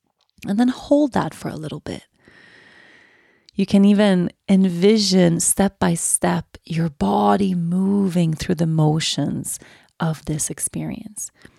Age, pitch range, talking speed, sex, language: 30-49, 160-205 Hz, 125 wpm, female, English